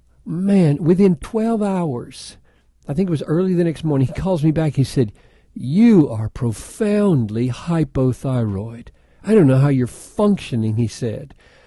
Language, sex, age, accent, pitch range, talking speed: English, male, 60-79, American, 120-165 Hz, 155 wpm